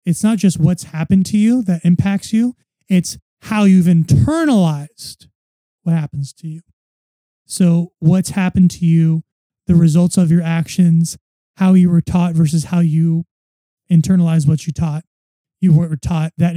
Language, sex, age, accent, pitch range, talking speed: English, male, 20-39, American, 160-185 Hz, 155 wpm